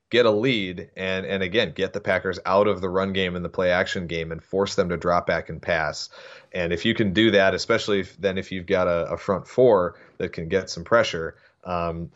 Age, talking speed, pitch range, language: 30-49, 235 wpm, 85-95 Hz, English